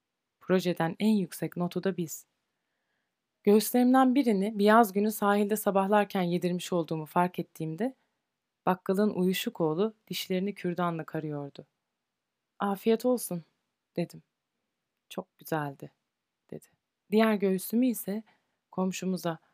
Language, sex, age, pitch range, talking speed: Turkish, female, 30-49, 170-215 Hz, 100 wpm